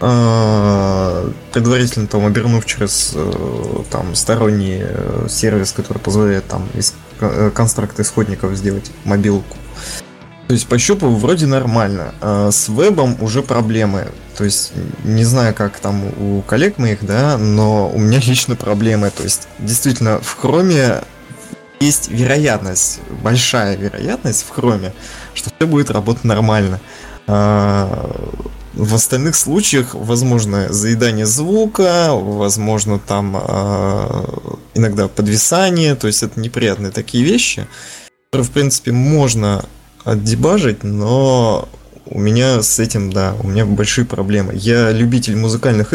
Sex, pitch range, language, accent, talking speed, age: male, 105-125 Hz, Russian, native, 120 wpm, 20-39